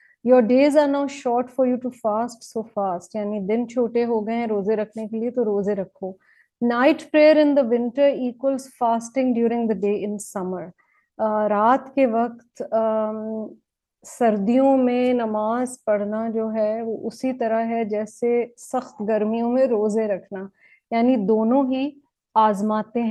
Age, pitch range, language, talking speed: 30-49, 220-250 Hz, English, 150 wpm